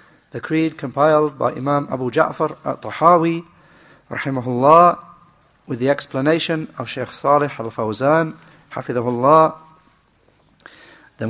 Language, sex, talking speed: English, male, 105 wpm